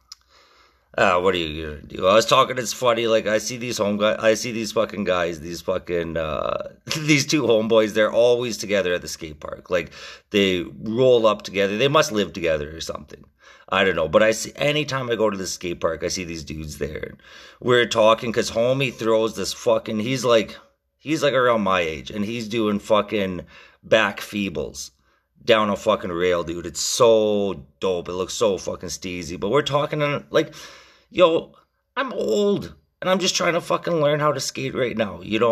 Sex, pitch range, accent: male, 100-155 Hz, American